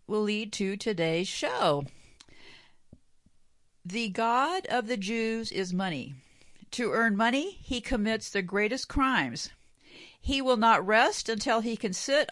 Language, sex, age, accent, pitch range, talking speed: English, female, 50-69, American, 210-275 Hz, 135 wpm